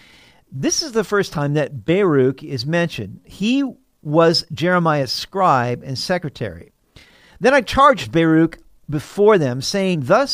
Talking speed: 135 wpm